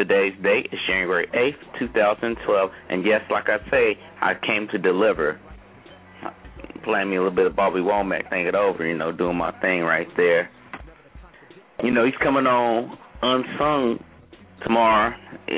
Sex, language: male, English